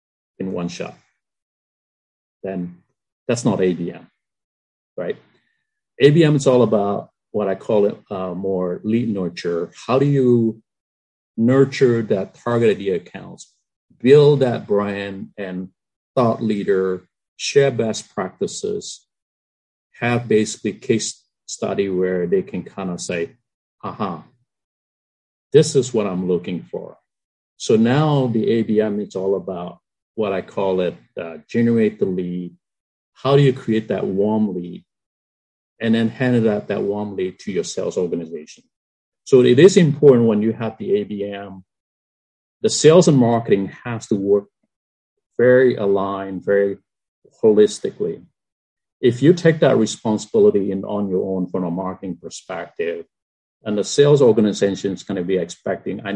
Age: 50-69